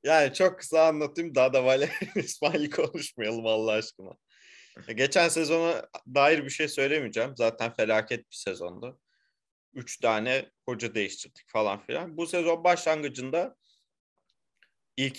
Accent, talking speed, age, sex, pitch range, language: native, 125 wpm, 30-49, male, 120-165 Hz, Turkish